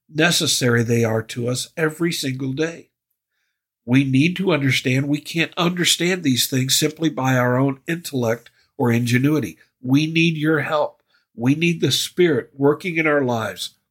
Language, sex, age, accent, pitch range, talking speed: English, male, 60-79, American, 115-160 Hz, 155 wpm